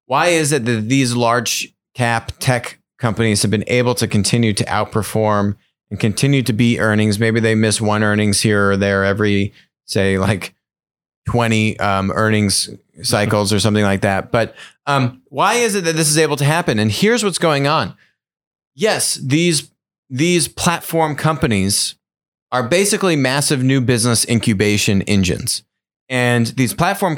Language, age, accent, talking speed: English, 30-49, American, 155 wpm